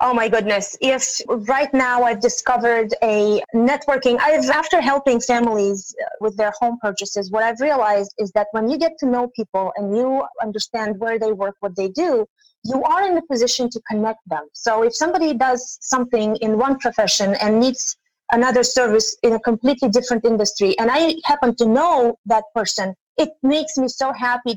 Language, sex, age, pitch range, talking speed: English, female, 30-49, 215-255 Hz, 185 wpm